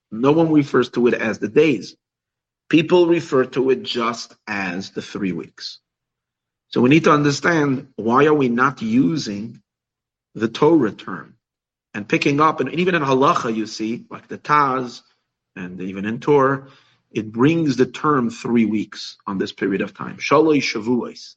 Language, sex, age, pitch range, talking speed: English, male, 40-59, 115-155 Hz, 165 wpm